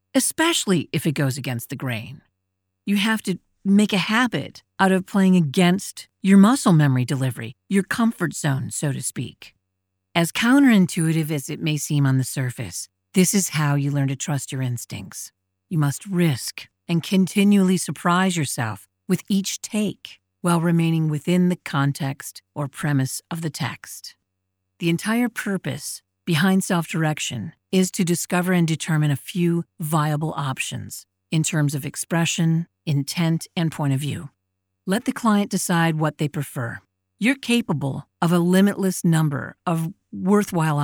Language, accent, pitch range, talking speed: English, American, 140-190 Hz, 150 wpm